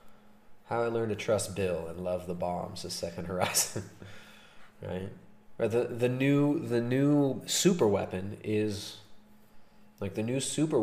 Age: 30-49